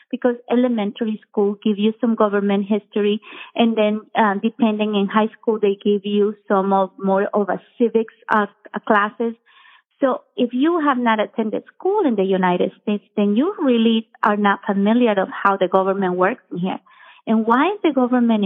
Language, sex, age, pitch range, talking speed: English, female, 30-49, 210-260 Hz, 175 wpm